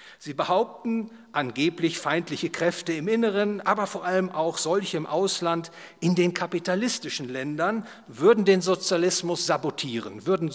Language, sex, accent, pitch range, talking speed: English, male, German, 145-185 Hz, 130 wpm